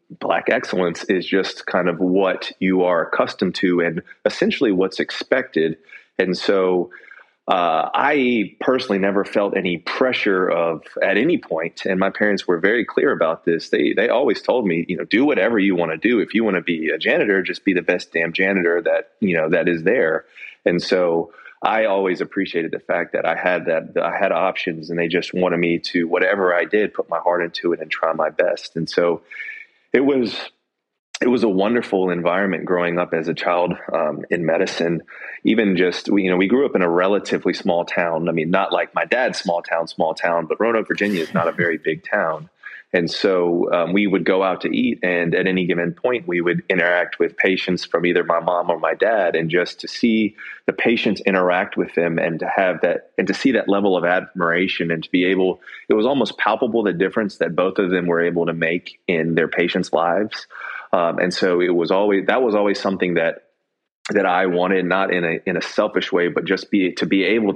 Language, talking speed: English, 215 wpm